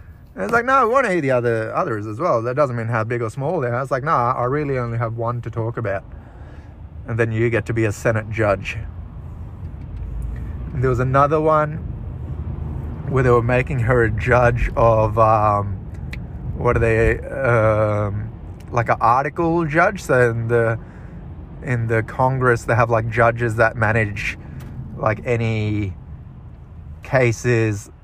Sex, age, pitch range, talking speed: male, 30-49, 105-125 Hz, 170 wpm